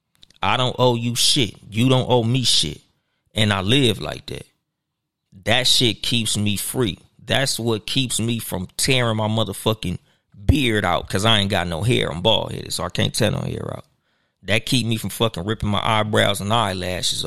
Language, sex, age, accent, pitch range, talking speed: English, male, 20-39, American, 110-160 Hz, 195 wpm